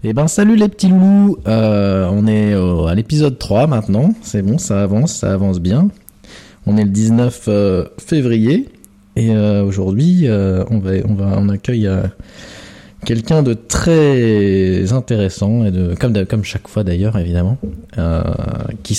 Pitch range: 95-115 Hz